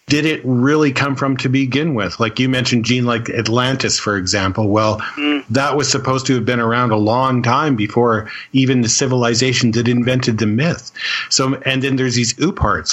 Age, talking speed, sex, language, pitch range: 40-59, 185 wpm, male, English, 110-135 Hz